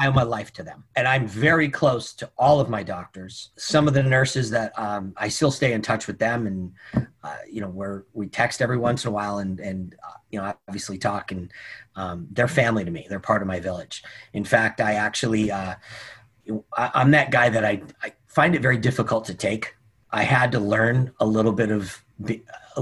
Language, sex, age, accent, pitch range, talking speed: English, male, 30-49, American, 105-120 Hz, 220 wpm